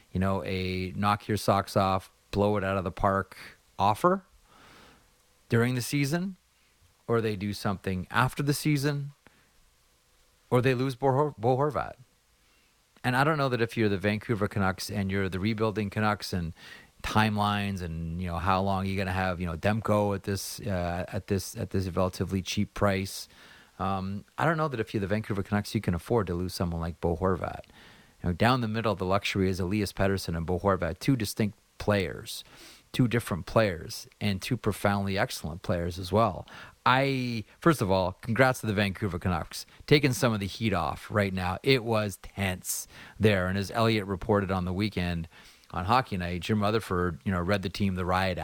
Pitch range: 95-110 Hz